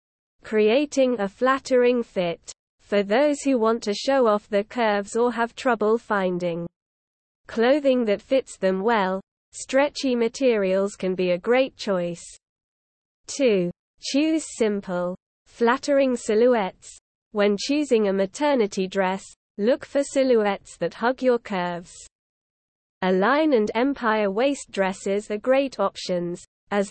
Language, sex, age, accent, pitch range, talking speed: English, female, 20-39, British, 195-250 Hz, 125 wpm